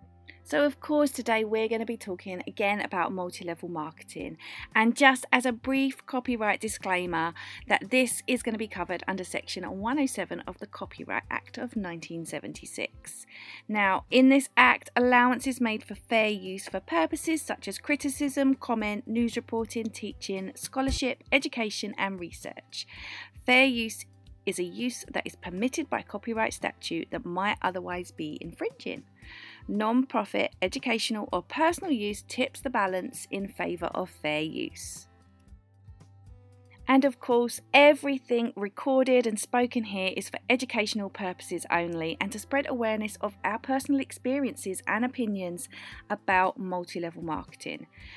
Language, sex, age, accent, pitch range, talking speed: English, female, 40-59, British, 180-255 Hz, 140 wpm